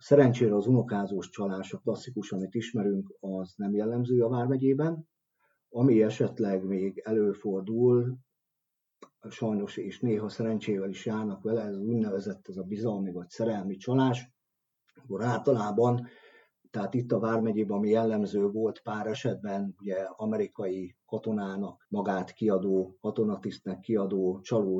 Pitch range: 100-120 Hz